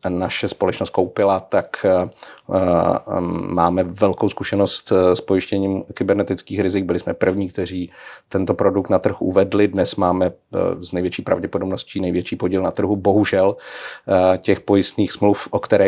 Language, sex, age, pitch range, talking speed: Czech, male, 40-59, 90-100 Hz, 130 wpm